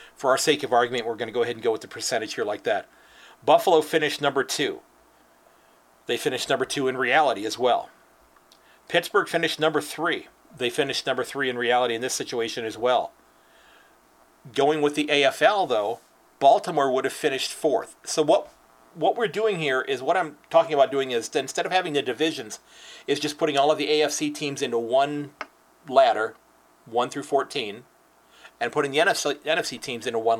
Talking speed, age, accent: 190 wpm, 40-59, American